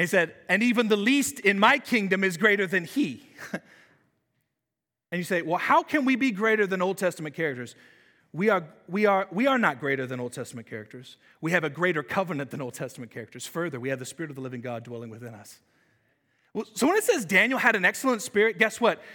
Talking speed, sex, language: 225 wpm, male, English